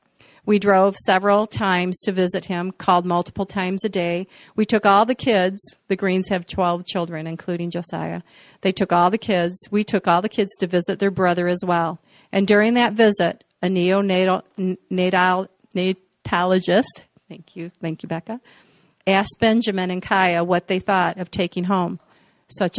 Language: English